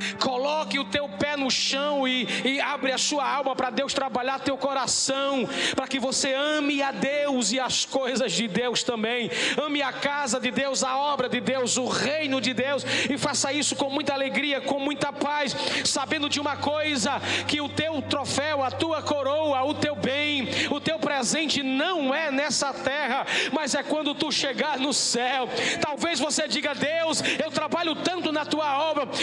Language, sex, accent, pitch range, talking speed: Portuguese, male, Brazilian, 275-330 Hz, 185 wpm